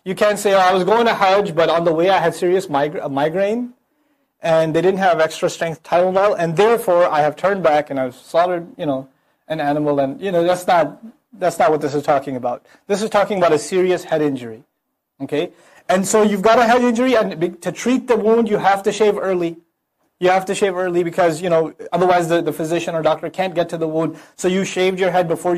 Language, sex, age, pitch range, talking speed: English, male, 30-49, 160-205 Hz, 240 wpm